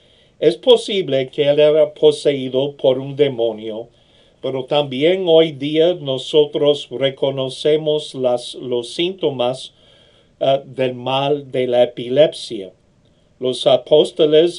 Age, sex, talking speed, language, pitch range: 50-69, male, 100 wpm, English, 125-155 Hz